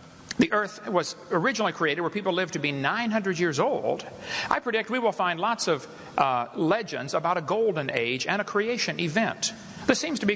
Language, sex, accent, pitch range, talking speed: Filipino, male, American, 165-225 Hz, 195 wpm